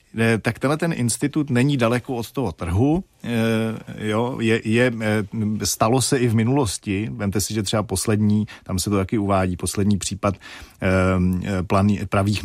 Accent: native